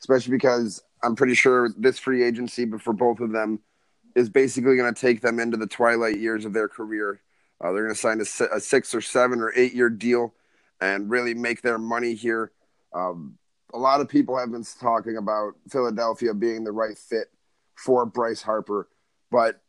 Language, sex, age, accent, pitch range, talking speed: English, male, 30-49, American, 110-130 Hz, 195 wpm